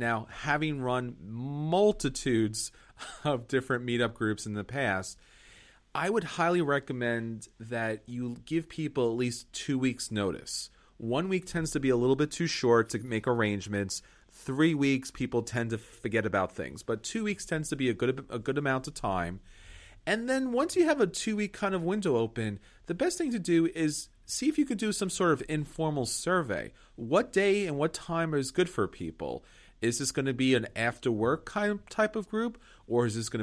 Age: 30-49